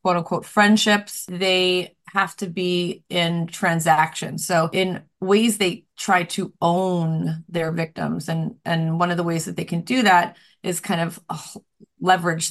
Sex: female